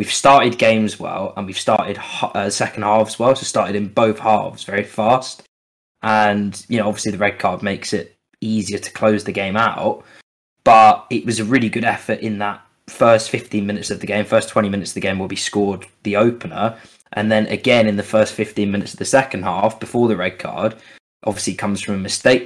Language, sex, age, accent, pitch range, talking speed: English, male, 20-39, British, 100-115 Hz, 215 wpm